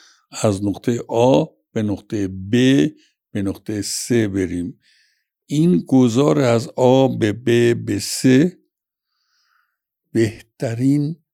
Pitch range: 105-130 Hz